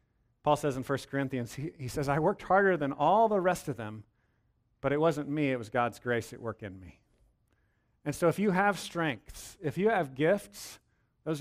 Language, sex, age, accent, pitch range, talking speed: English, male, 40-59, American, 115-150 Hz, 210 wpm